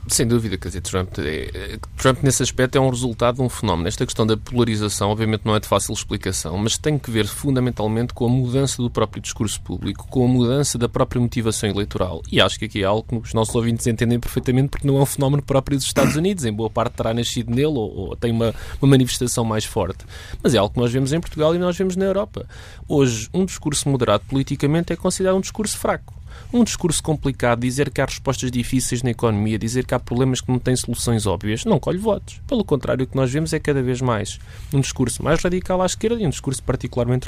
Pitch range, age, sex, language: 110-145 Hz, 20-39, male, Portuguese